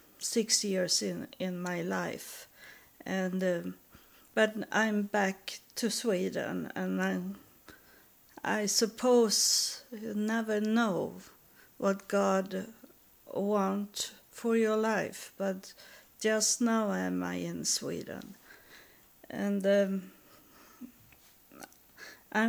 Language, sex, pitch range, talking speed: English, female, 190-225 Hz, 95 wpm